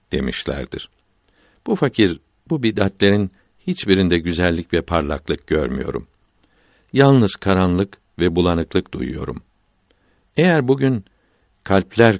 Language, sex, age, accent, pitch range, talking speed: Turkish, male, 60-79, native, 85-105 Hz, 90 wpm